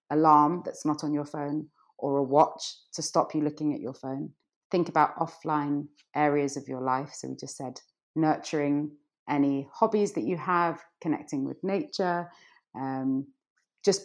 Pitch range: 135-170 Hz